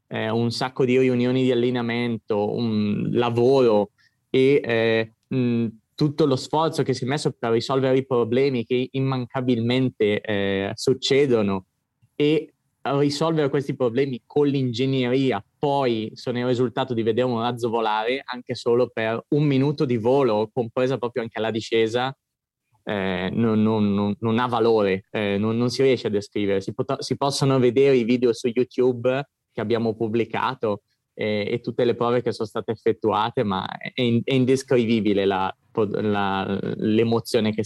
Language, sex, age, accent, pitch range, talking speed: Italian, male, 20-39, native, 110-130 Hz, 145 wpm